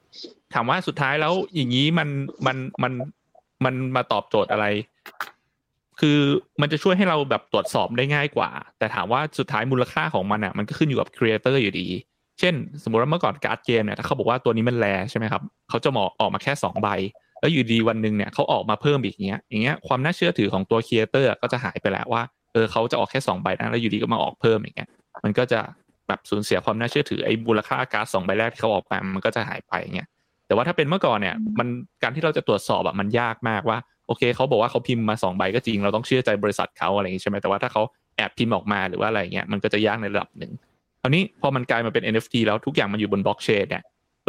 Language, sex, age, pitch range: Thai, male, 20-39, 105-135 Hz